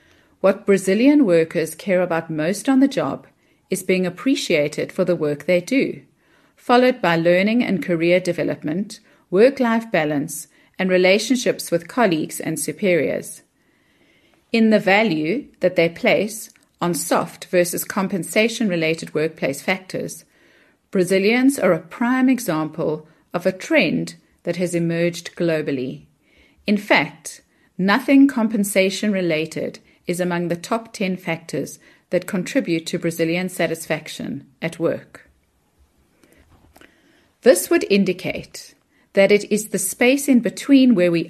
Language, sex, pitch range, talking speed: English, female, 170-230 Hz, 120 wpm